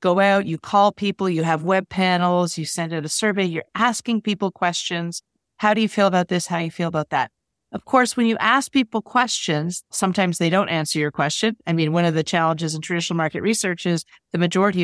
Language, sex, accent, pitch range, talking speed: English, female, American, 165-205 Hz, 225 wpm